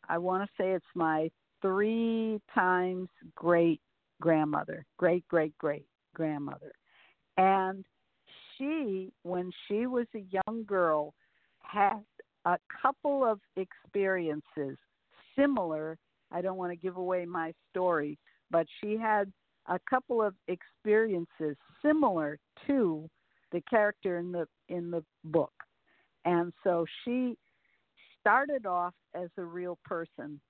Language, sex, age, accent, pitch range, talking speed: English, female, 60-79, American, 170-210 Hz, 110 wpm